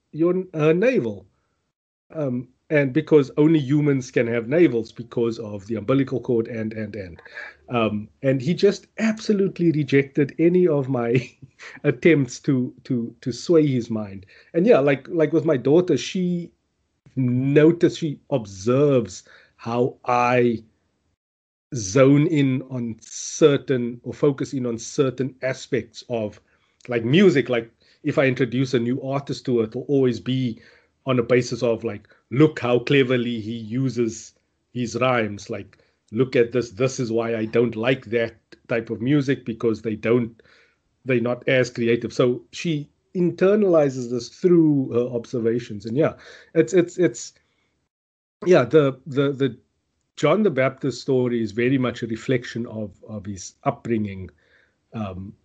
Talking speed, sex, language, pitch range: 145 wpm, male, English, 115-145 Hz